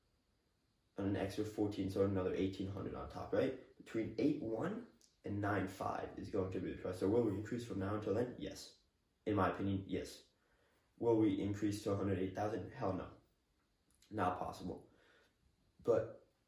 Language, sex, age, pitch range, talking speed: English, male, 20-39, 95-125 Hz, 155 wpm